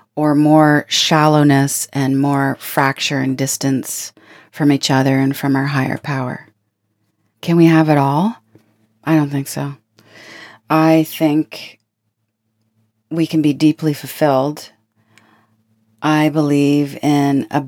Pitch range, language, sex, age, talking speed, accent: 135-165 Hz, English, female, 40-59, 120 wpm, American